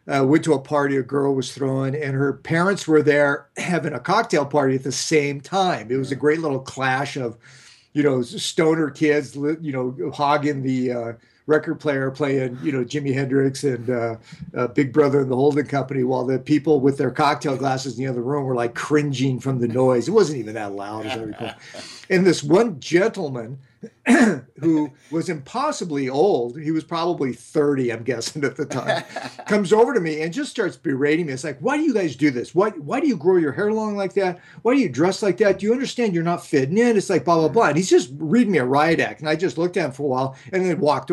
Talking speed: 235 wpm